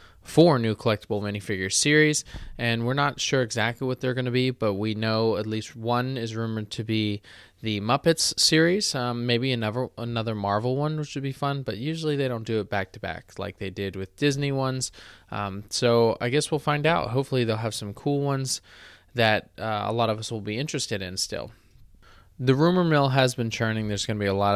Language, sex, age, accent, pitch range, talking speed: English, male, 20-39, American, 100-130 Hz, 215 wpm